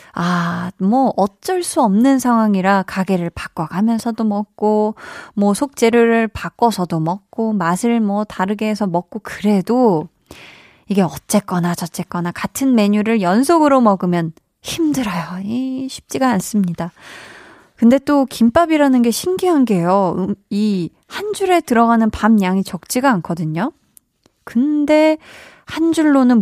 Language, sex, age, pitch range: Korean, female, 20-39, 185-240 Hz